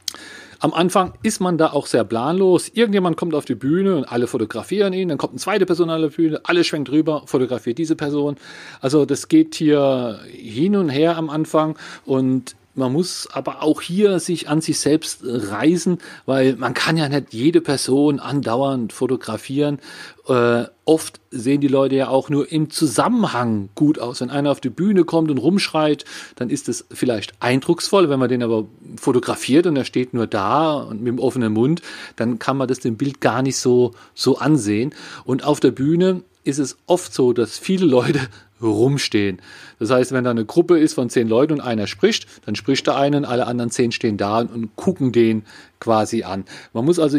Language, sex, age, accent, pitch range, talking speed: German, male, 40-59, German, 120-160 Hz, 195 wpm